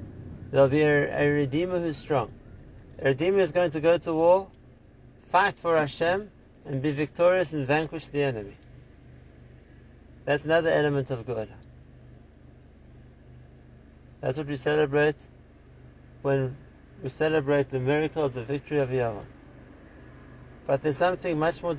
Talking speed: 135 wpm